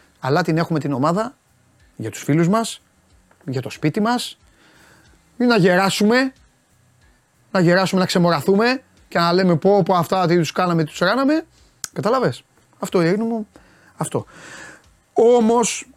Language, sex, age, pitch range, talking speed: Greek, male, 30-49, 160-210 Hz, 140 wpm